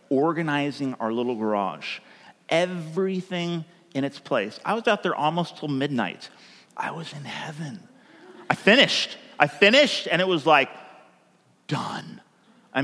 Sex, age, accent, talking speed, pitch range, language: male, 30-49, American, 135 wpm, 140-210 Hz, English